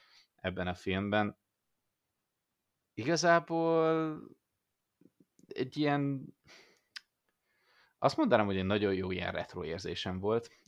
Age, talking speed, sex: 20-39, 90 wpm, male